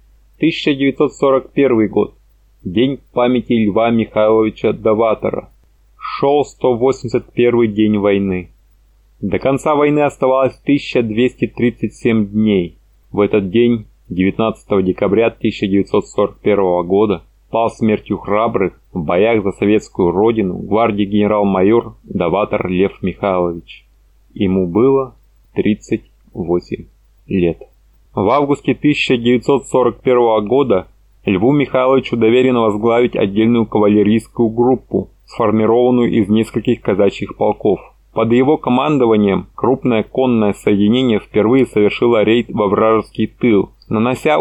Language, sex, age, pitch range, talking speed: Russian, male, 20-39, 105-130 Hz, 95 wpm